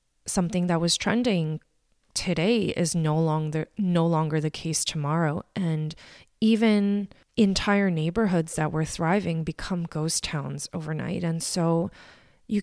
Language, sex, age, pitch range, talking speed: English, female, 20-39, 155-180 Hz, 130 wpm